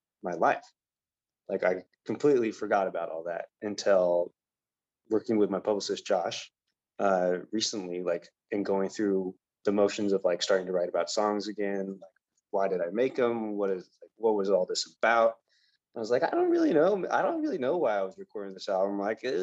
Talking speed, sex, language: 190 wpm, male, English